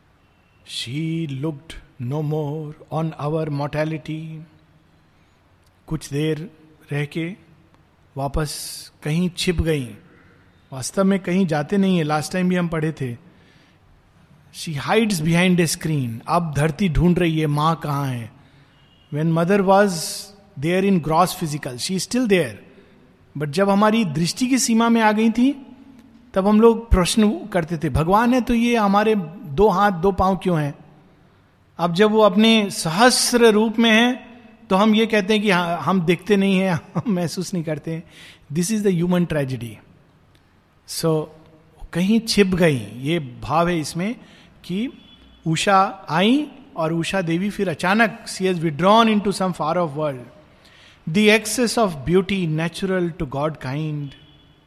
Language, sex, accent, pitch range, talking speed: Hindi, male, native, 155-205 Hz, 150 wpm